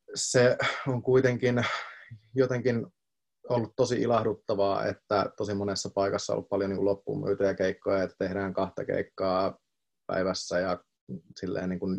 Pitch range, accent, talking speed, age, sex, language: 95-110 Hz, native, 125 wpm, 30-49, male, Finnish